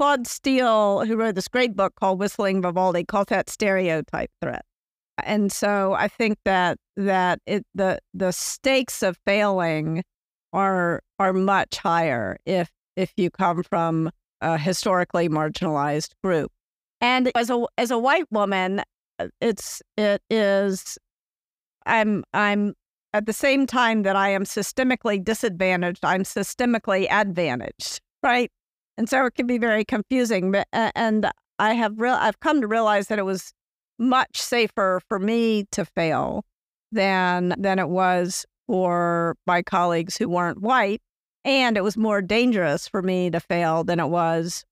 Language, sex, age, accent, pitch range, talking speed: English, female, 50-69, American, 180-225 Hz, 150 wpm